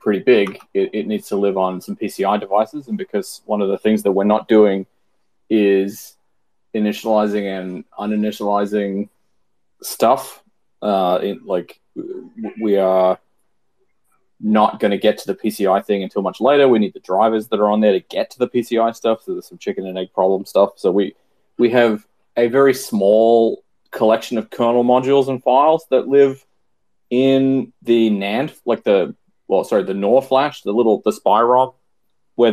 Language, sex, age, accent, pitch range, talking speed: English, male, 20-39, Australian, 100-125 Hz, 175 wpm